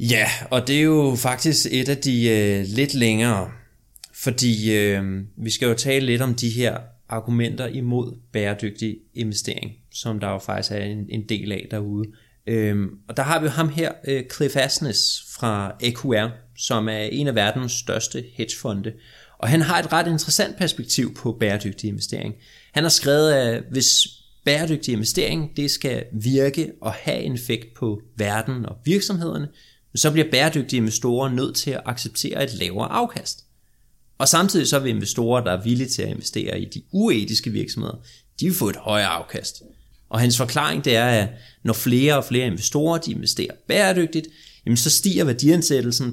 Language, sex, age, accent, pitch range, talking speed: Danish, male, 20-39, native, 110-135 Hz, 175 wpm